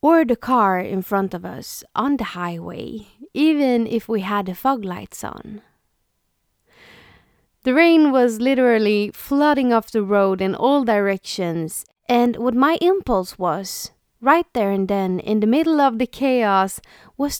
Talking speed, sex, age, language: 155 wpm, female, 20-39, English